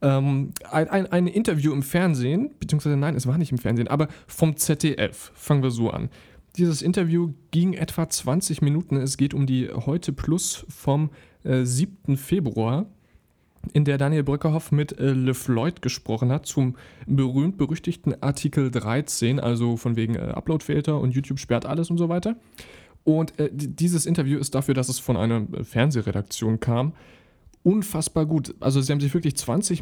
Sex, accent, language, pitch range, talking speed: male, German, German, 125-160 Hz, 165 wpm